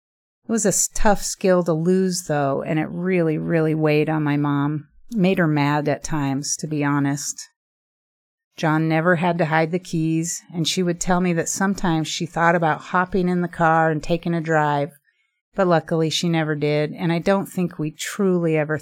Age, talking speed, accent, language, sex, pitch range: 30-49, 200 wpm, American, English, female, 150-180 Hz